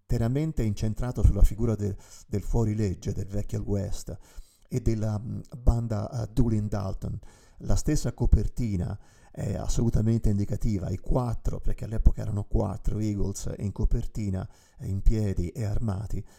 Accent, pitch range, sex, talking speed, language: native, 100-120 Hz, male, 115 wpm, Italian